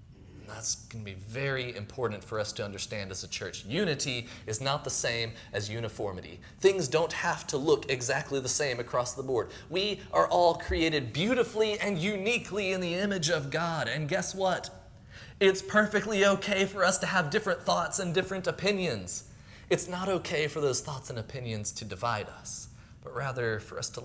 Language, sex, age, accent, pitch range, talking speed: English, male, 30-49, American, 110-160 Hz, 185 wpm